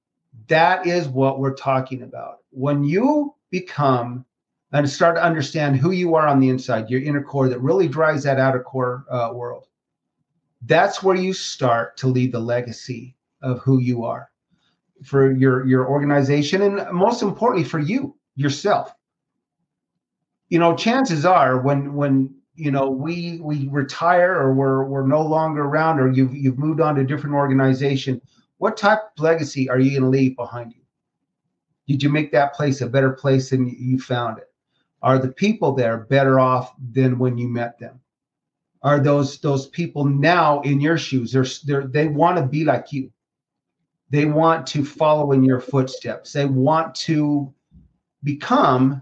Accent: American